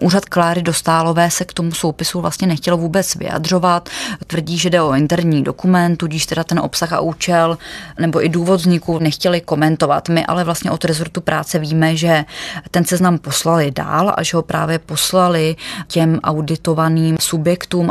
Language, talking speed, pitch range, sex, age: Czech, 165 wpm, 160-175 Hz, female, 20-39